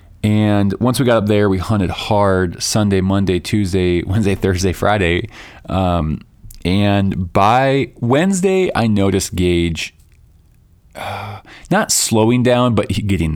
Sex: male